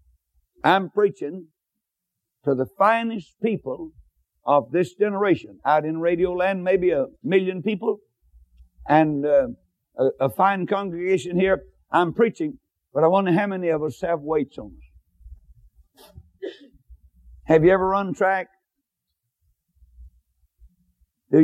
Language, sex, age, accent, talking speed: English, male, 60-79, American, 120 wpm